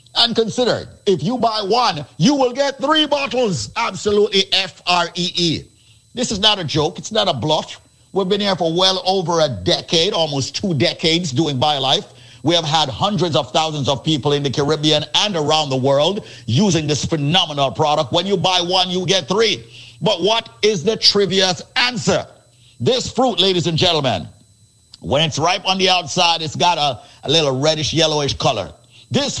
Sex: male